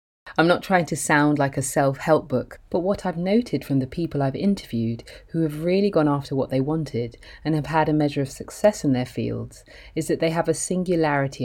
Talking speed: 220 wpm